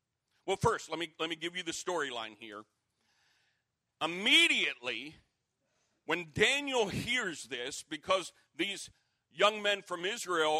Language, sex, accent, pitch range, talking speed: English, male, American, 145-185 Hz, 125 wpm